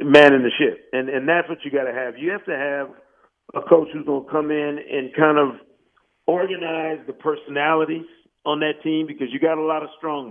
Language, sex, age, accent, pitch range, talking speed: English, male, 50-69, American, 145-165 Hz, 225 wpm